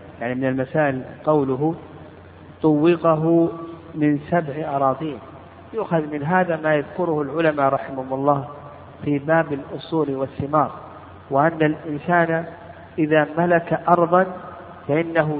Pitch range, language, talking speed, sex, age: 140-170 Hz, Arabic, 100 wpm, male, 50-69